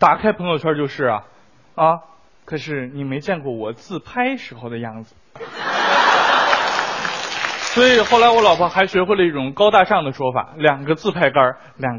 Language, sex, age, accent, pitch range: Chinese, male, 20-39, native, 130-205 Hz